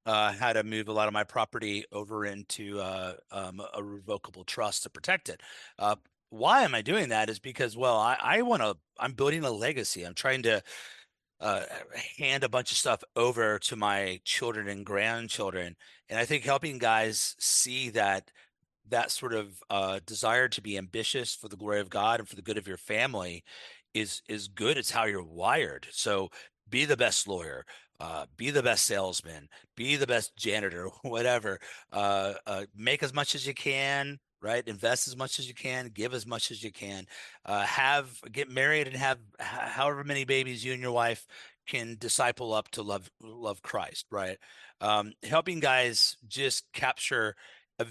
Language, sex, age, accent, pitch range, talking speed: English, male, 30-49, American, 100-125 Hz, 185 wpm